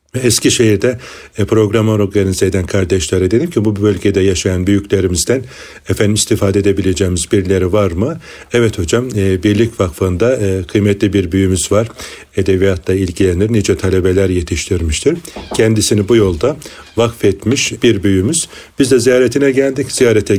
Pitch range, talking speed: 100-120 Hz, 125 wpm